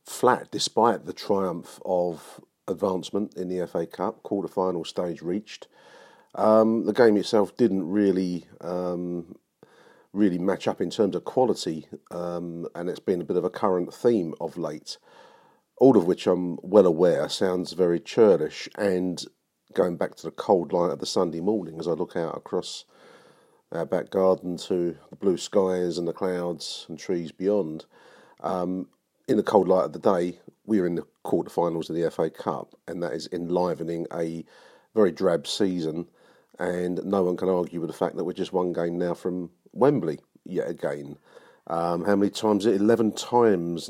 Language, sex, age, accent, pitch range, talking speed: English, male, 40-59, British, 90-105 Hz, 175 wpm